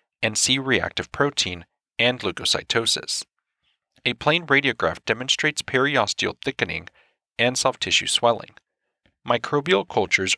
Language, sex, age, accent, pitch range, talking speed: English, male, 40-59, American, 105-150 Hz, 105 wpm